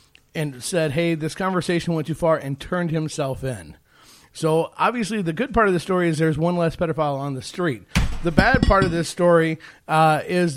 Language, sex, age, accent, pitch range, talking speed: English, male, 30-49, American, 140-175 Hz, 205 wpm